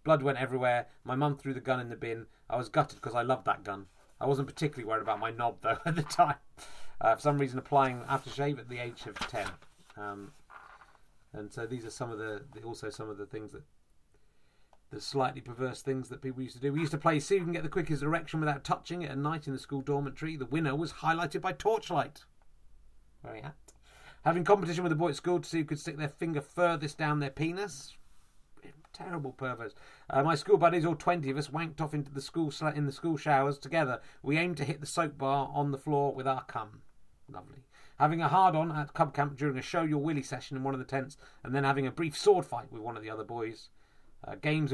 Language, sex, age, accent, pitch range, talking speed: English, male, 30-49, British, 125-160 Hz, 235 wpm